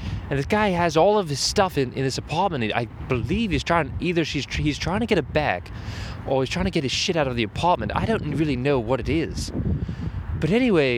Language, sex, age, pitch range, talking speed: English, male, 20-39, 110-170 Hz, 245 wpm